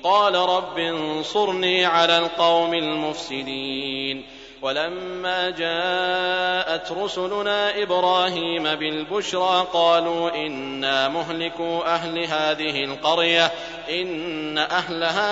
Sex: male